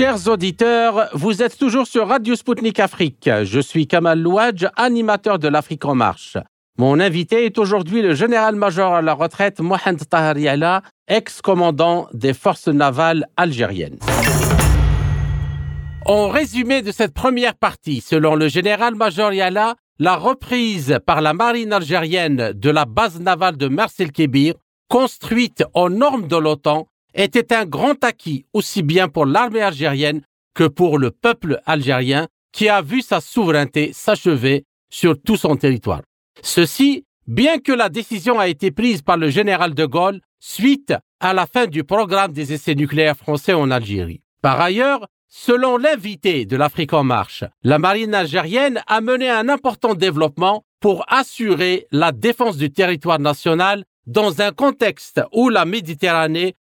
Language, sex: French, male